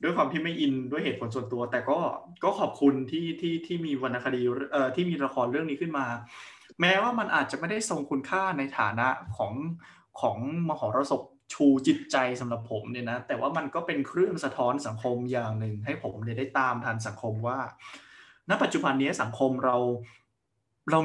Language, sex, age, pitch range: Thai, male, 20-39, 120-155 Hz